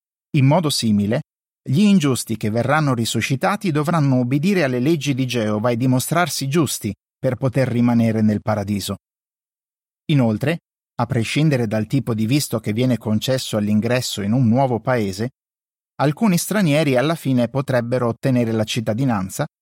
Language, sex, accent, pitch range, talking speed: Italian, male, native, 115-145 Hz, 140 wpm